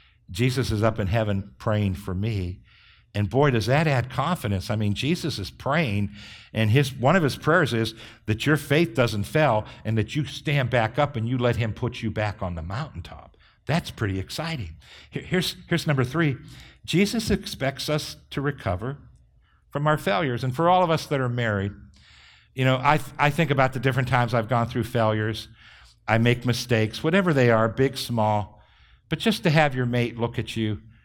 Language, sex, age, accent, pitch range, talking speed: English, male, 60-79, American, 105-135 Hz, 195 wpm